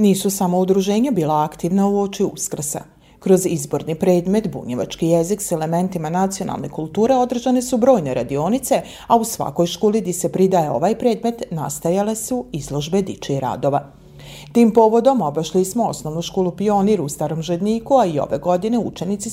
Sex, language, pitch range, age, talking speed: female, Croatian, 165-225 Hz, 40-59, 155 wpm